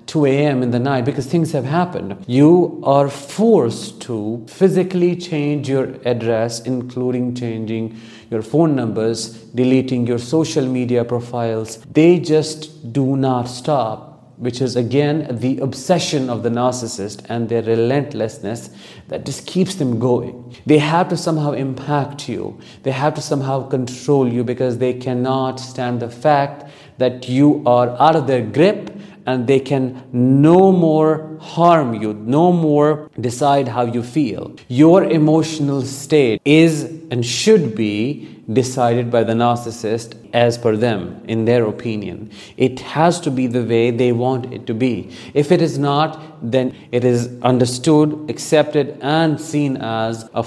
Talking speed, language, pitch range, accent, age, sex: 150 wpm, English, 120-150 Hz, Indian, 50-69, male